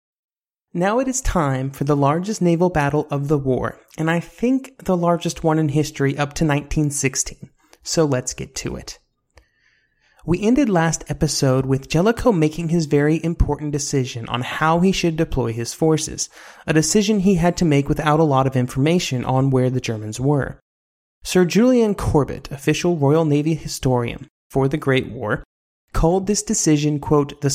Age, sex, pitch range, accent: 30-49, male, 130-165 Hz, American